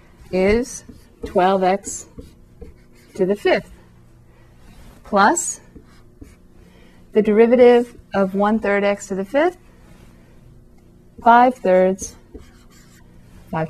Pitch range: 170-220 Hz